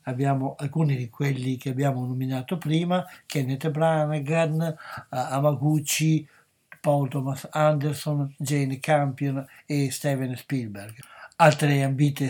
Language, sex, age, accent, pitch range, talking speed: Italian, male, 60-79, native, 130-155 Hz, 100 wpm